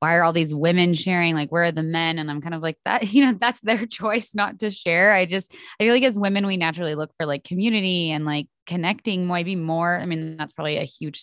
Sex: female